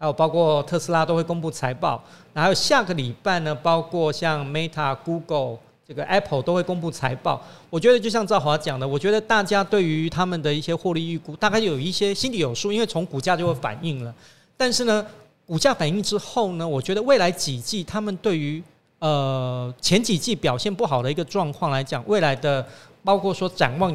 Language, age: Chinese, 40-59